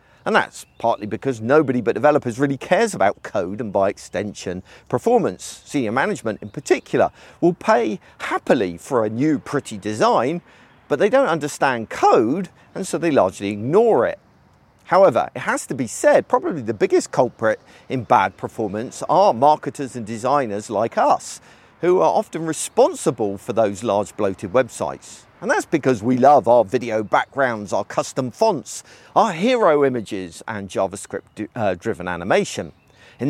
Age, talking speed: 50-69, 155 wpm